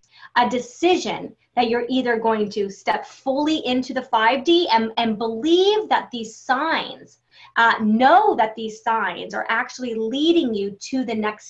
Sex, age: female, 20-39